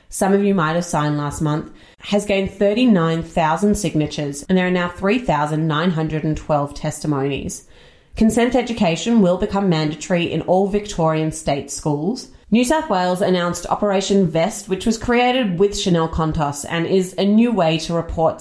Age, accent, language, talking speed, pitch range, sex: 30-49, Australian, English, 155 wpm, 155-195 Hz, female